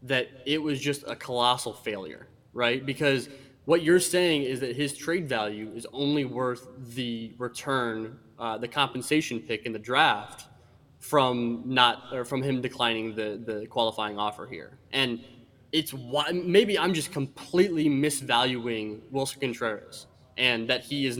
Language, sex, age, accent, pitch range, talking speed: English, male, 20-39, American, 120-150 Hz, 155 wpm